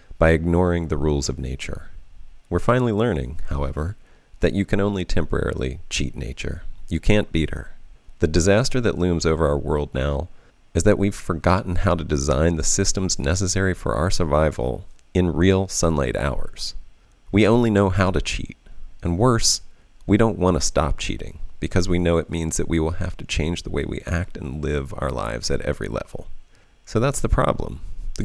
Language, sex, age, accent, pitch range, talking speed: English, male, 40-59, American, 80-100 Hz, 185 wpm